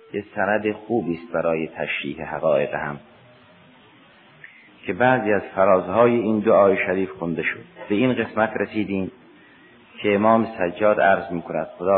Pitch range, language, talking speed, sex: 85-110 Hz, Persian, 140 wpm, male